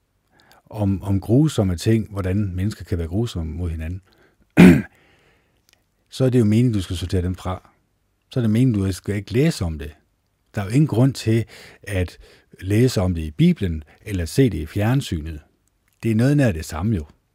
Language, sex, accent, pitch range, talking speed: Danish, male, native, 90-115 Hz, 195 wpm